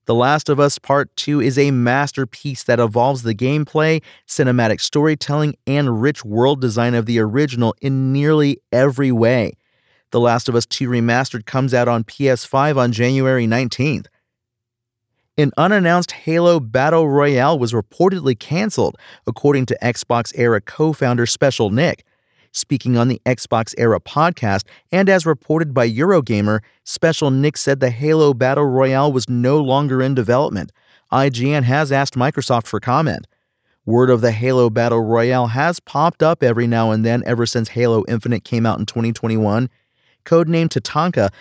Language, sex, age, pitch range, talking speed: English, male, 40-59, 120-145 Hz, 155 wpm